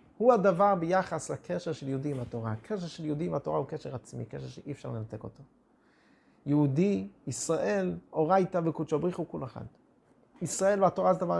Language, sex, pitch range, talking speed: Hebrew, male, 140-195 Hz, 170 wpm